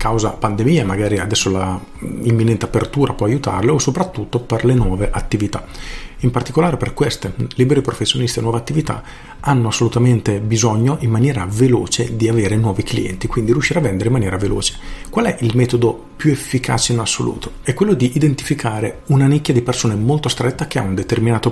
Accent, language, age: native, Italian, 40-59